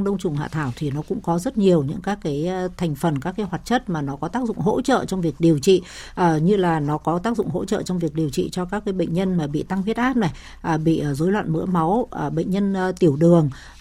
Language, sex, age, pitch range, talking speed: Vietnamese, female, 60-79, 160-205 Hz, 270 wpm